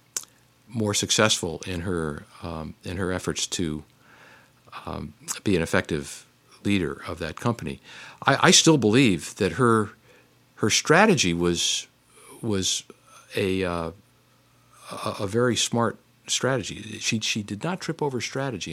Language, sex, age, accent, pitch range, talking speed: English, male, 50-69, American, 90-120 Hz, 130 wpm